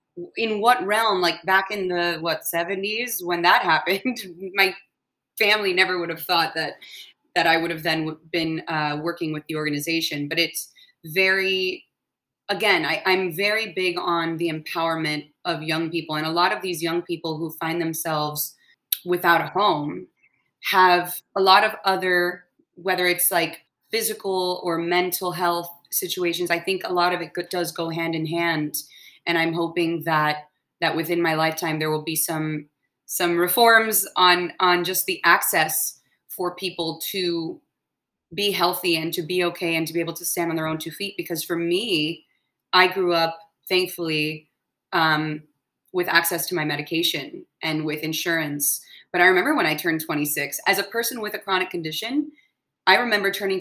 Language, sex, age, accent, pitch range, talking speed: English, female, 20-39, American, 160-185 Hz, 170 wpm